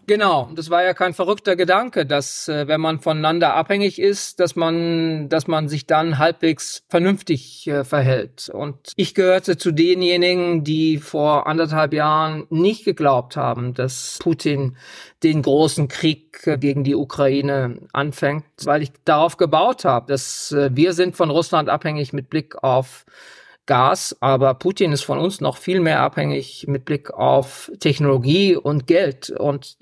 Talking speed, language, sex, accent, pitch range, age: 150 wpm, German, male, German, 145-170 Hz, 40-59